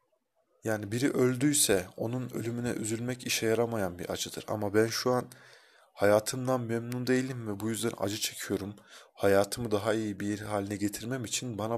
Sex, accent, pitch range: male, native, 100-115 Hz